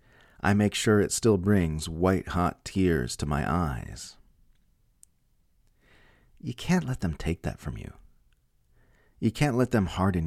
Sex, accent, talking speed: male, American, 140 wpm